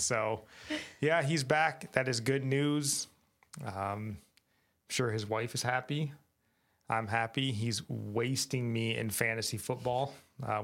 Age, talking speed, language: 20-39, 135 wpm, English